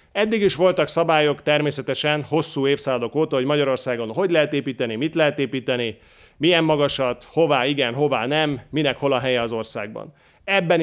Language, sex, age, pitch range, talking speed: Hungarian, male, 30-49, 130-155 Hz, 160 wpm